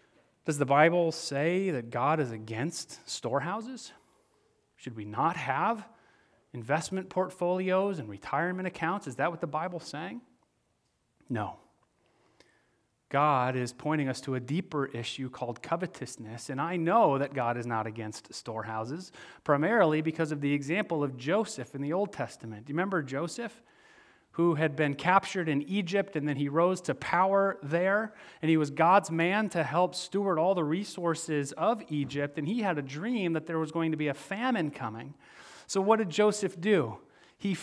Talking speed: 170 wpm